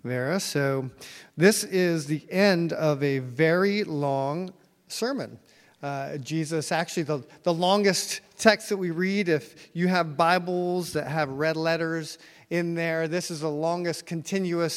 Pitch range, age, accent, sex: 155-185 Hz, 40-59, American, male